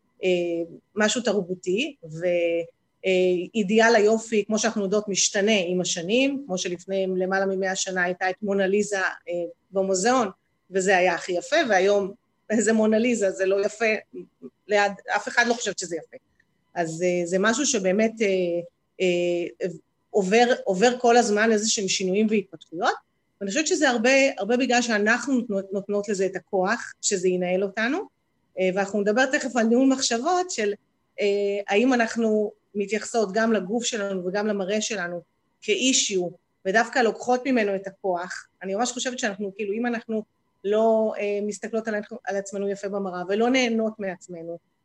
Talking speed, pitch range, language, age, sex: 145 wpm, 185-230 Hz, Hebrew, 30-49, female